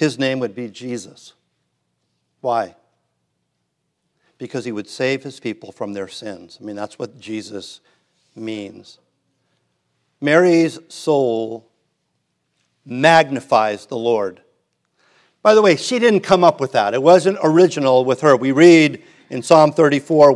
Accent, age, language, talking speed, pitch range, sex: American, 50-69, English, 135 wpm, 125-165 Hz, male